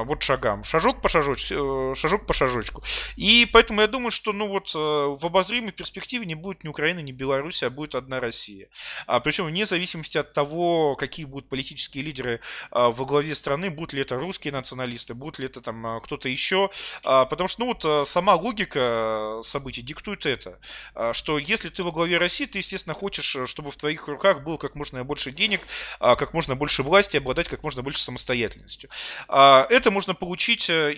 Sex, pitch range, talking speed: male, 130-180 Hz, 185 wpm